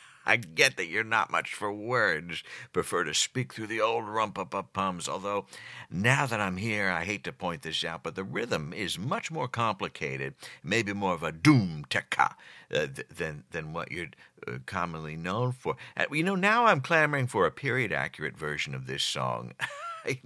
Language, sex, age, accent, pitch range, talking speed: English, male, 60-79, American, 85-125 Hz, 190 wpm